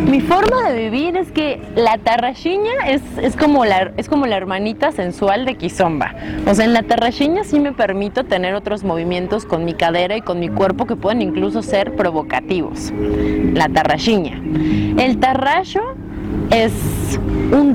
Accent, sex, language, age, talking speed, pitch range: Mexican, female, Spanish, 20-39, 155 wpm, 175-255 Hz